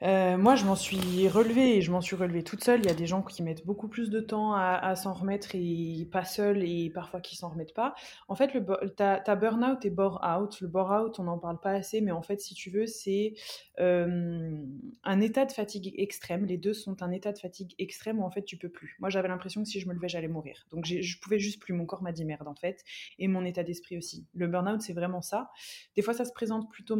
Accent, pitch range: French, 180-215 Hz